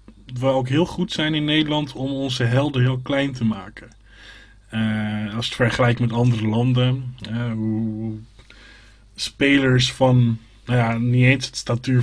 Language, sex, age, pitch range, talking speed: Dutch, male, 20-39, 115-130 Hz, 165 wpm